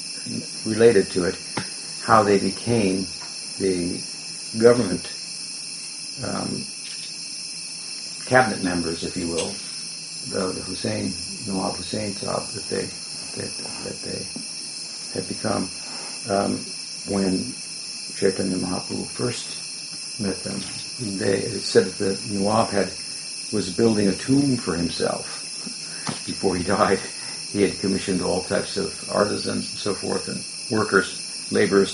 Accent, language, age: American, English, 60-79